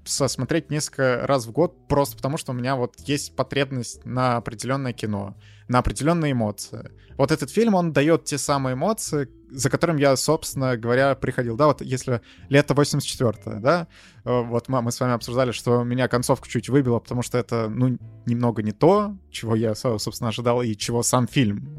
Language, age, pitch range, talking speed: Russian, 20-39, 115-140 Hz, 180 wpm